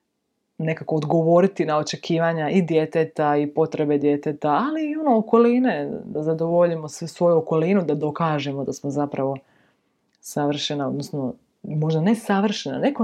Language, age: Croatian, 20-39